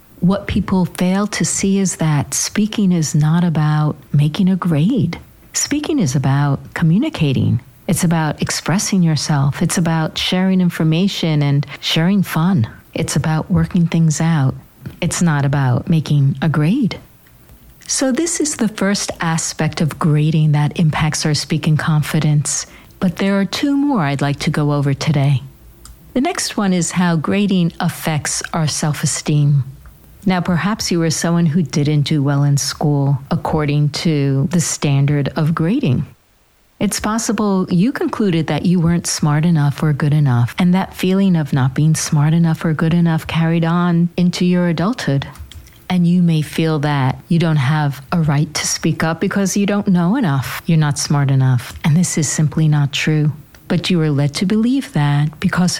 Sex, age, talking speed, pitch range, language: female, 50-69, 165 wpm, 145-180 Hz, English